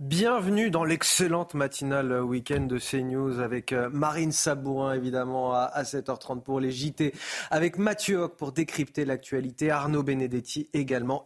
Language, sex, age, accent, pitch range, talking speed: French, male, 30-49, French, 130-170 Hz, 135 wpm